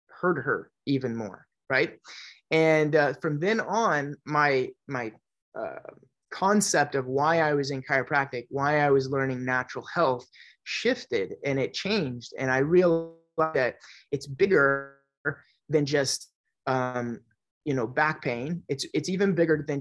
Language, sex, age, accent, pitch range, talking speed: English, male, 20-39, American, 135-180 Hz, 145 wpm